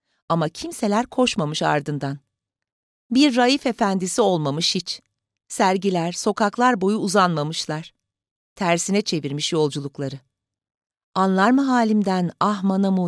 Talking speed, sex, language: 95 wpm, female, Turkish